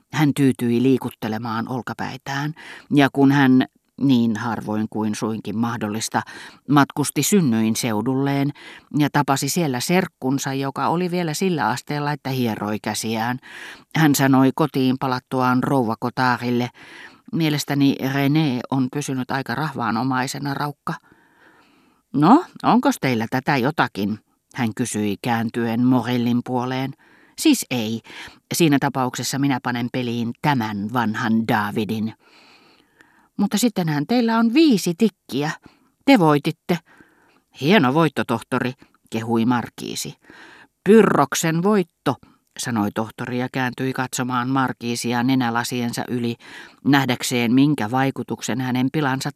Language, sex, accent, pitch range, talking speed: Finnish, female, native, 120-145 Hz, 105 wpm